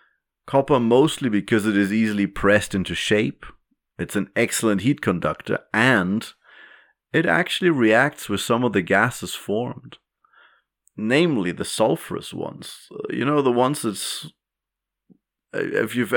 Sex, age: male, 30-49